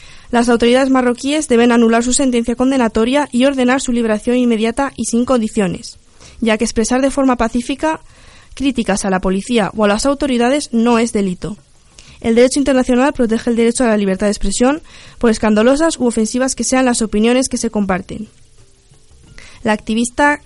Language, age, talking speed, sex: Spanish, 20-39, 165 wpm, female